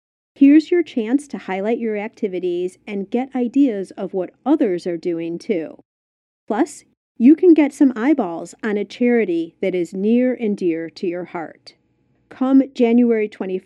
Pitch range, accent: 195-280 Hz, American